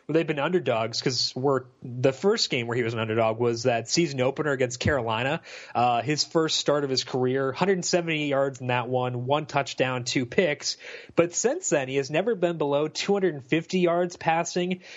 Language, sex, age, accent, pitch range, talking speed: English, male, 30-49, American, 135-170 Hz, 180 wpm